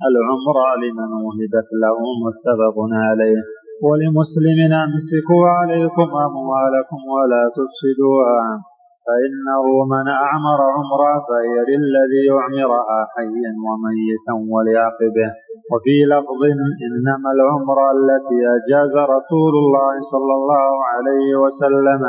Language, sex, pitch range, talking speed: Arabic, male, 120-145 Hz, 90 wpm